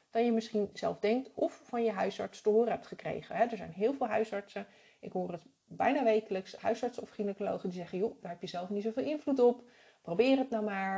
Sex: female